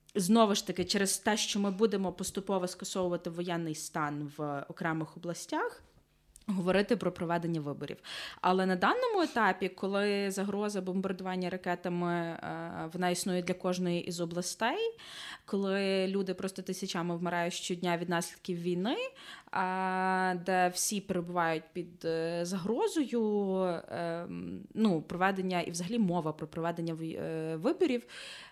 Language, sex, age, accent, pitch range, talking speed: Ukrainian, female, 20-39, native, 175-210 Hz, 115 wpm